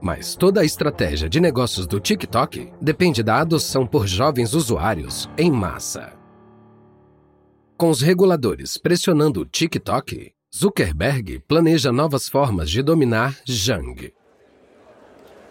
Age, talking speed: 40-59, 110 wpm